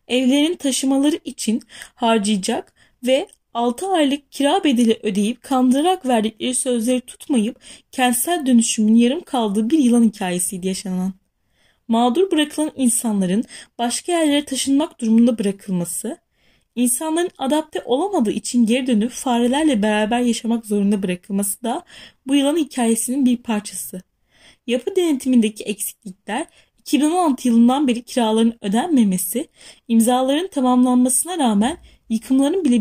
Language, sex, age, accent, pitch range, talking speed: Turkish, female, 10-29, native, 225-280 Hz, 110 wpm